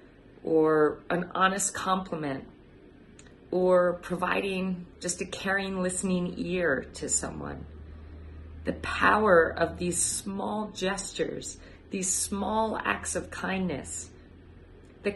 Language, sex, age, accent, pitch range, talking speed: English, female, 40-59, American, 165-205 Hz, 100 wpm